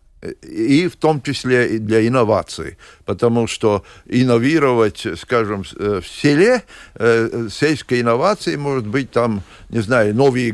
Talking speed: 120 wpm